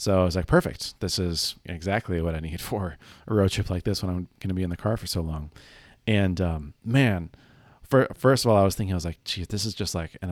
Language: English